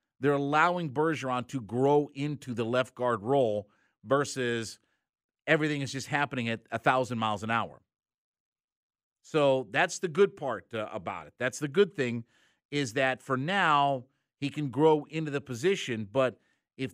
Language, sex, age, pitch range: English, male, 50-69, 120-155 Hz